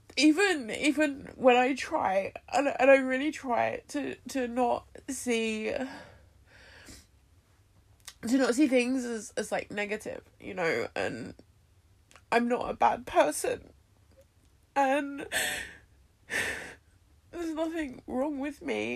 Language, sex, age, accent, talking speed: English, female, 20-39, British, 115 wpm